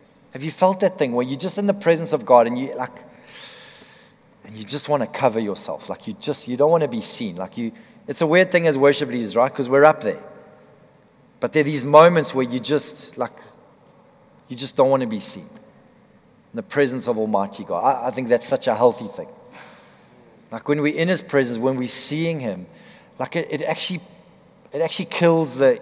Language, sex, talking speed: English, male, 220 wpm